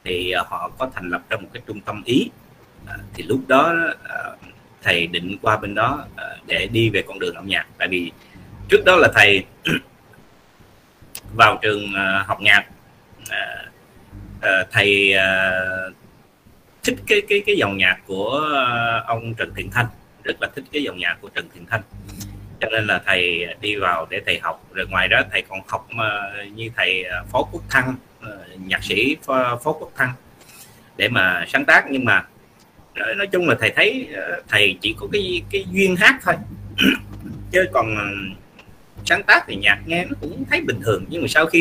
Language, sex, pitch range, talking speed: Vietnamese, male, 100-130 Hz, 180 wpm